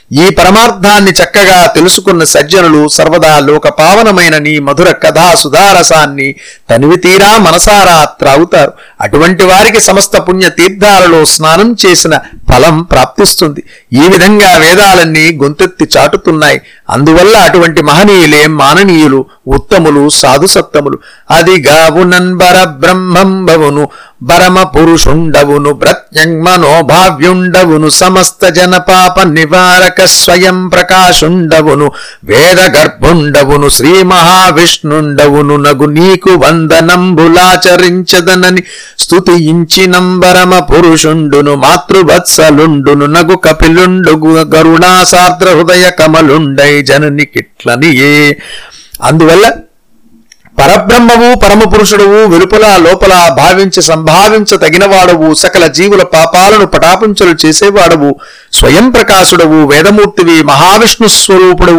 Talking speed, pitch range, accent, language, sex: 65 wpm, 155-185 Hz, native, Telugu, male